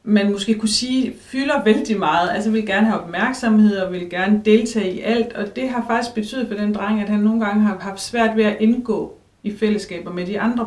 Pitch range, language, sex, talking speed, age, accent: 195-230 Hz, Danish, female, 230 wpm, 30-49, native